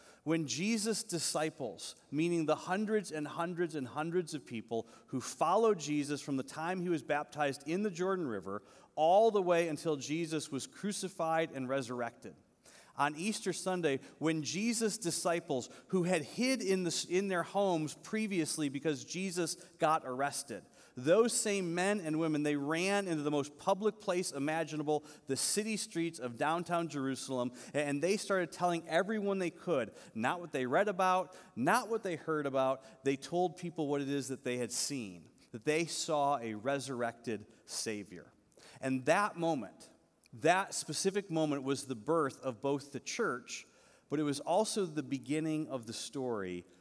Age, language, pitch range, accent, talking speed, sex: 30-49, English, 140-185 Hz, American, 165 wpm, male